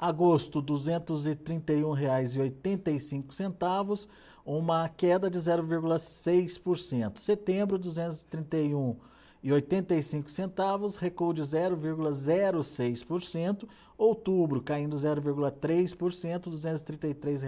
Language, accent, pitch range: Portuguese, Brazilian, 130-175 Hz